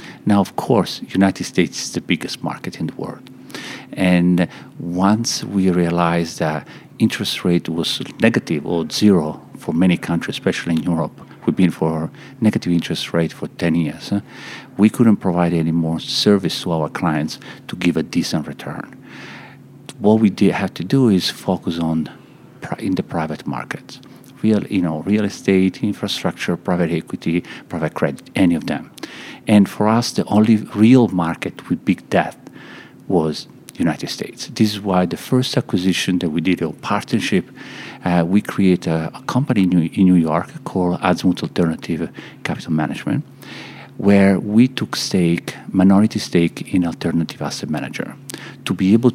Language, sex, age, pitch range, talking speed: English, male, 50-69, 85-105 Hz, 160 wpm